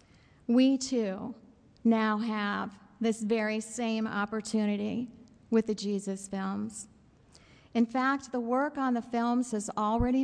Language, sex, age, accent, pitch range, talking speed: English, female, 50-69, American, 210-245 Hz, 125 wpm